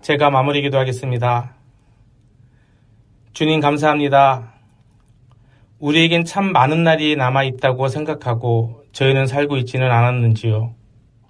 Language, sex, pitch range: Korean, male, 120-150 Hz